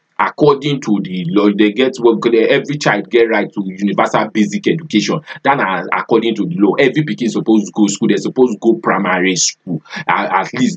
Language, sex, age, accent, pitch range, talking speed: English, male, 30-49, Nigerian, 95-115 Hz, 205 wpm